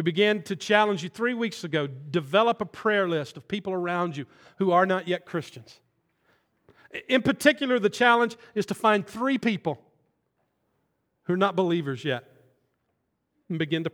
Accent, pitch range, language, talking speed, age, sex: American, 135-190 Hz, English, 165 wpm, 40-59, male